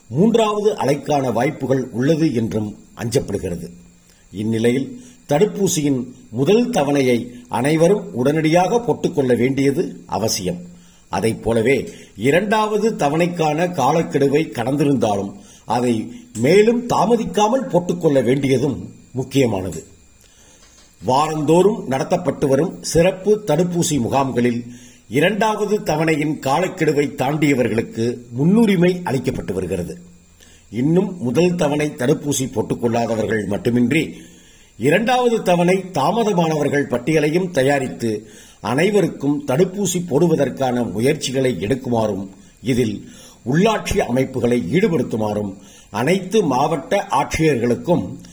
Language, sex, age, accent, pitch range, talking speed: Tamil, male, 50-69, native, 115-170 Hz, 75 wpm